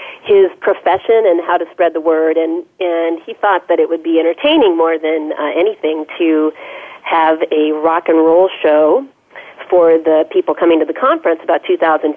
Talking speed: 180 wpm